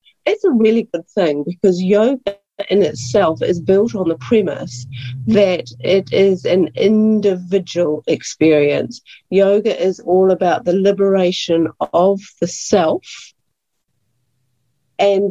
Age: 50-69